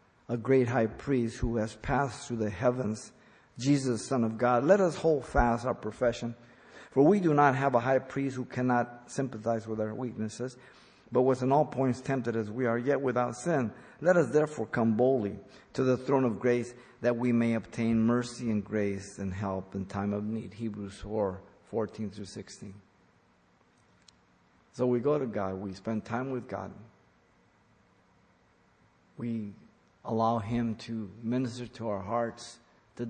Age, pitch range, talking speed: 50-69, 110-130 Hz, 170 wpm